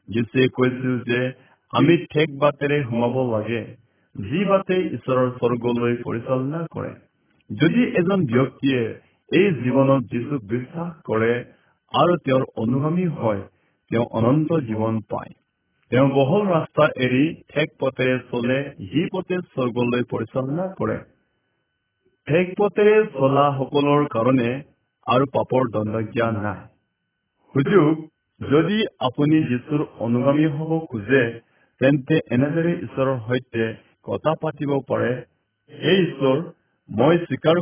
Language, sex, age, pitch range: Hindi, male, 50-69, 120-150 Hz